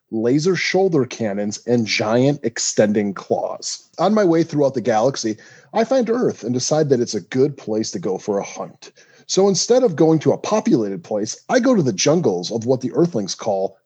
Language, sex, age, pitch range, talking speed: English, male, 30-49, 115-175 Hz, 200 wpm